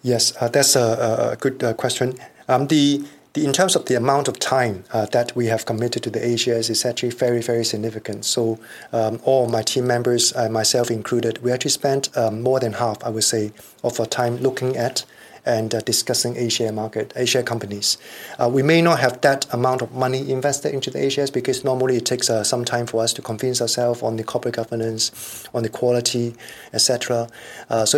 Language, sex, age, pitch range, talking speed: English, male, 20-39, 115-130 Hz, 205 wpm